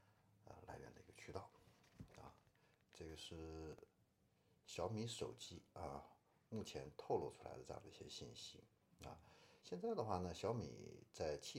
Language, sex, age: Chinese, male, 50-69